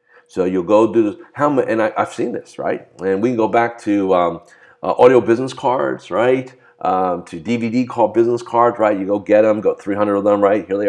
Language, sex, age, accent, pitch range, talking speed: English, male, 50-69, American, 100-165 Hz, 220 wpm